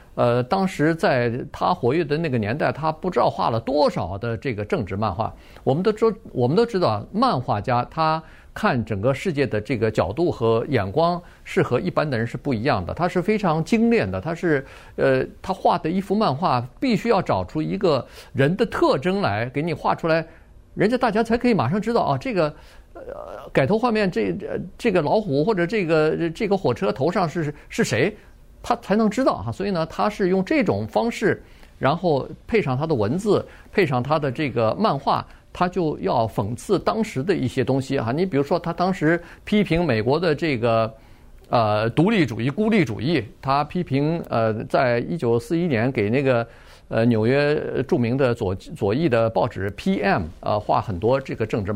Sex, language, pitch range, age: male, Chinese, 120-180 Hz, 50-69